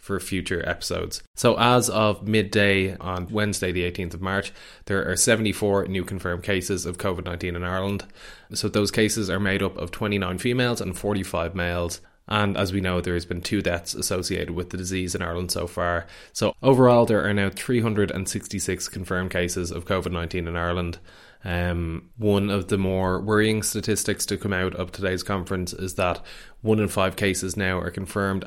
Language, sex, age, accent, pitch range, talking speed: English, male, 20-39, Irish, 90-105 Hz, 180 wpm